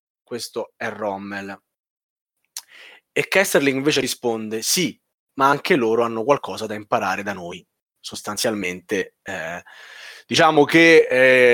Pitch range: 115-185 Hz